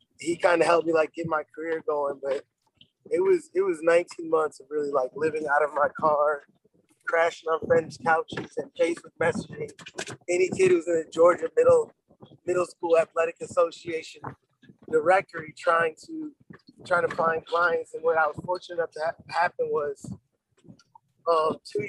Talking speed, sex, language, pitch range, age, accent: 175 wpm, male, English, 155-180 Hz, 20-39, American